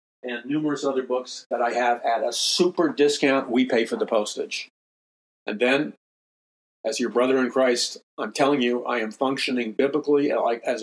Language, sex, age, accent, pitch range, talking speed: English, male, 50-69, American, 115-140 Hz, 170 wpm